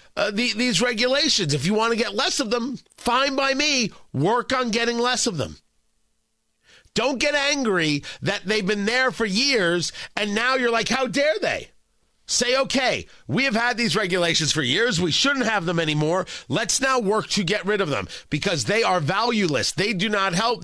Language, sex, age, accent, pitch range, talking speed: English, male, 40-59, American, 140-225 Hz, 190 wpm